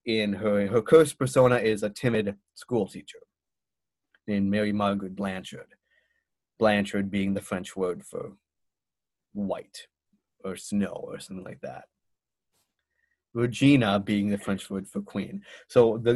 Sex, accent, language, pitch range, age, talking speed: male, American, English, 100-125 Hz, 30-49, 135 wpm